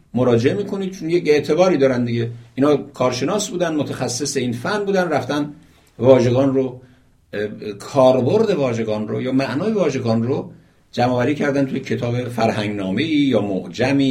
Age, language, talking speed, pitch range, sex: 60-79, Persian, 140 wpm, 115-170 Hz, male